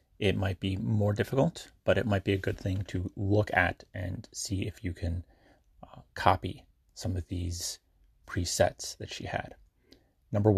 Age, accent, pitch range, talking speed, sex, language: 30-49, American, 90-105 Hz, 170 wpm, male, English